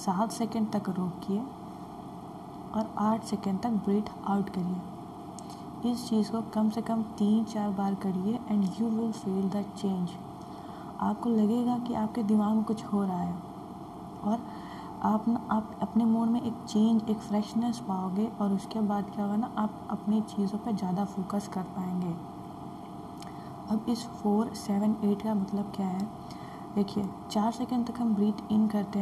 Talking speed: 165 wpm